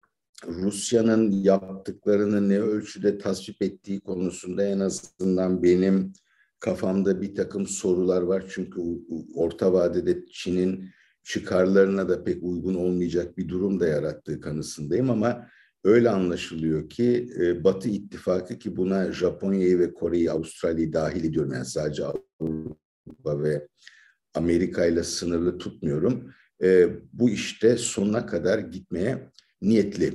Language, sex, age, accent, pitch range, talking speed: Turkish, male, 50-69, native, 90-105 Hz, 115 wpm